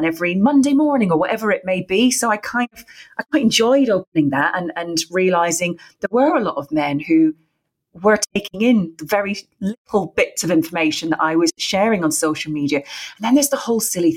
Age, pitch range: 30-49, 155-190 Hz